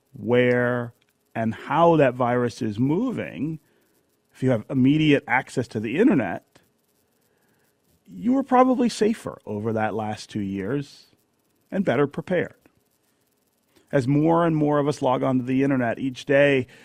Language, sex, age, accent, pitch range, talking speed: English, male, 40-59, American, 110-145 Hz, 140 wpm